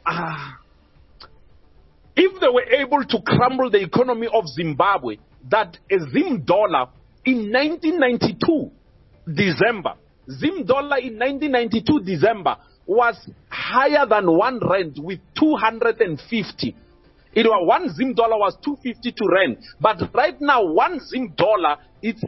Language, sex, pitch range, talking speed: English, male, 215-290 Hz, 125 wpm